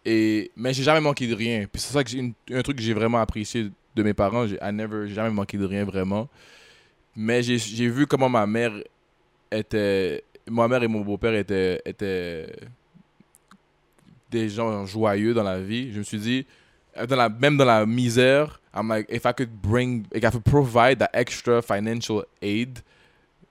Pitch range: 105-130 Hz